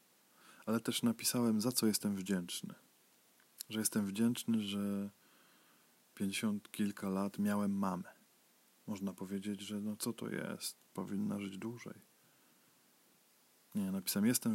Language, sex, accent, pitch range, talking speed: Polish, male, native, 100-120 Hz, 120 wpm